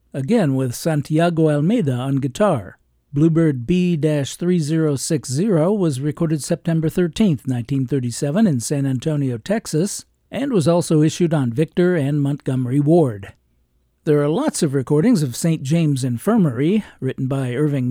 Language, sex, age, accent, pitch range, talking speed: English, male, 50-69, American, 135-175 Hz, 125 wpm